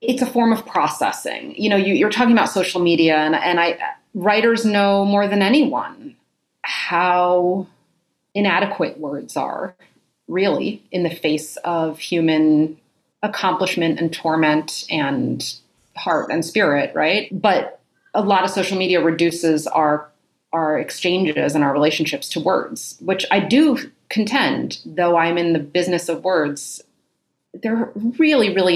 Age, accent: 30-49, American